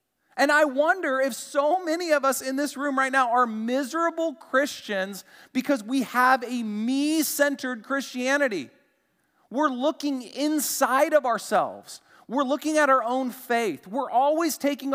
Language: English